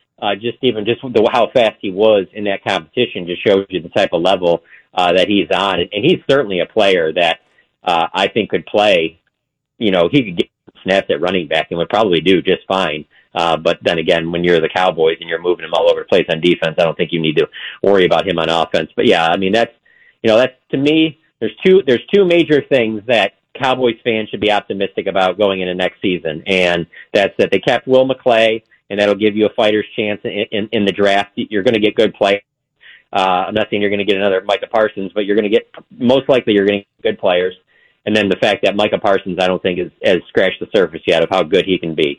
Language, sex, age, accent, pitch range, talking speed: English, male, 40-59, American, 90-125 Hz, 250 wpm